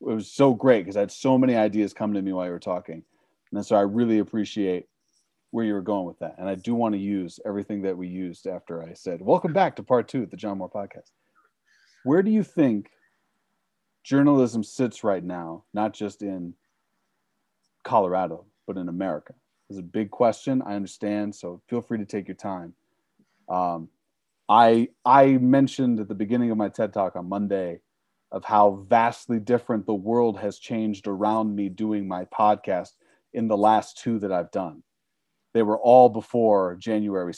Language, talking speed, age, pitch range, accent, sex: English, 190 wpm, 30-49, 95-115 Hz, American, male